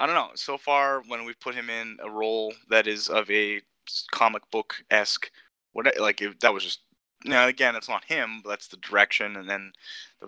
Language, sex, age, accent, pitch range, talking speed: English, male, 20-39, American, 95-110 Hz, 215 wpm